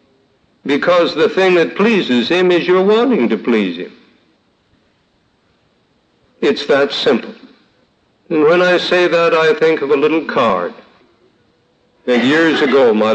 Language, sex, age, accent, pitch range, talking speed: English, male, 60-79, American, 120-200 Hz, 135 wpm